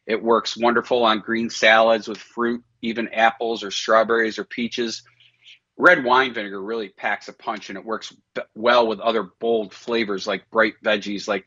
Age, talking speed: 40-59, 180 wpm